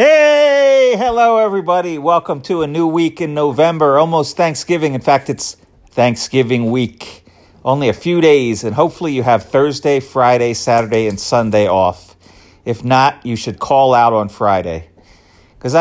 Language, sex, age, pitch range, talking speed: English, male, 40-59, 100-135 Hz, 150 wpm